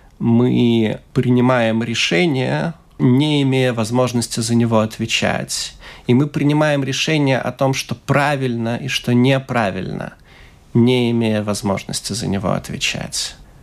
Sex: male